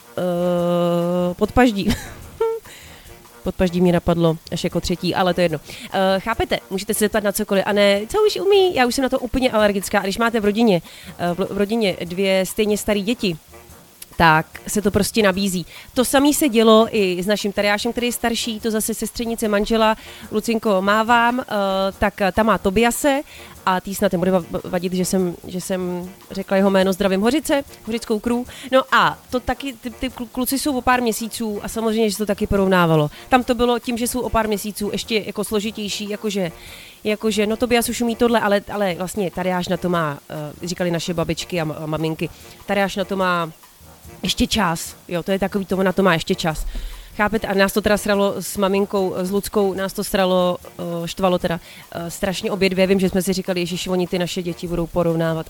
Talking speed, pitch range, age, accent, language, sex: 200 wpm, 180-220 Hz, 30-49, native, Czech, female